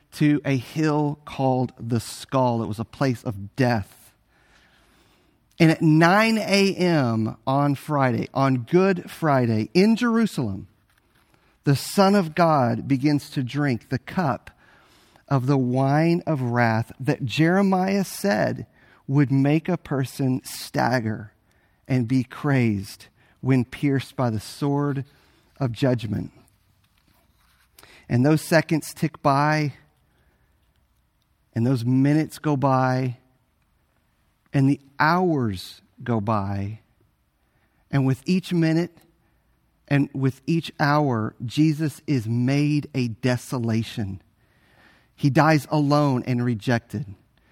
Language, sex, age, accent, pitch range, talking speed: English, male, 40-59, American, 115-155 Hz, 110 wpm